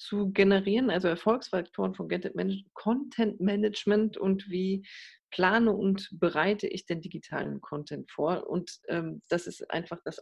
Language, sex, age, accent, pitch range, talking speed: German, female, 40-59, German, 170-200 Hz, 130 wpm